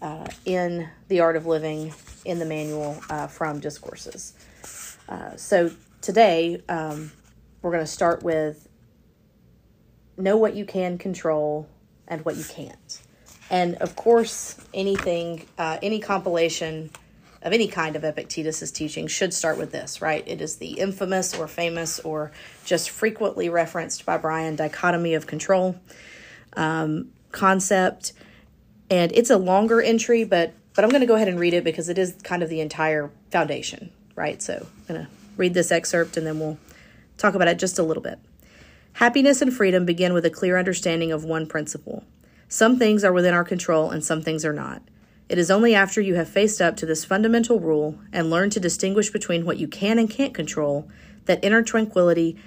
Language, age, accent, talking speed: English, 30-49, American, 175 wpm